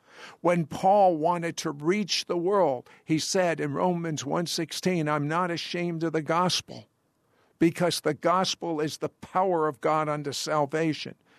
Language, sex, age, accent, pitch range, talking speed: English, male, 60-79, American, 145-180 Hz, 150 wpm